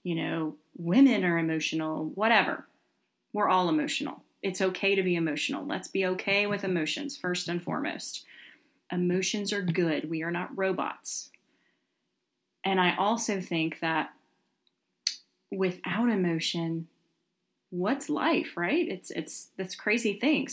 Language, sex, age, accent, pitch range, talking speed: English, female, 30-49, American, 170-195 Hz, 130 wpm